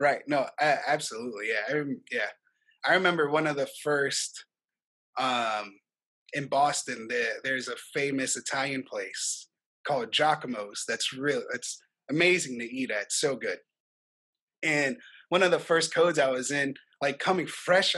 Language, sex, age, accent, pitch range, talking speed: English, male, 20-39, American, 135-170 Hz, 155 wpm